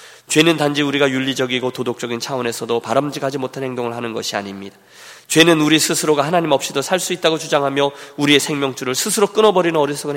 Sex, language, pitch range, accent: male, Korean, 130-165 Hz, native